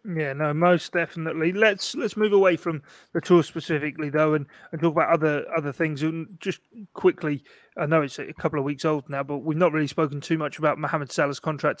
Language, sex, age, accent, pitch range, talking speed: English, male, 30-49, British, 150-170 Hz, 220 wpm